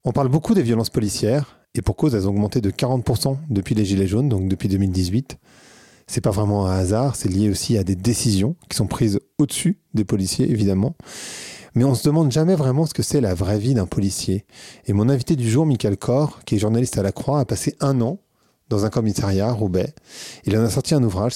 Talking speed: 230 wpm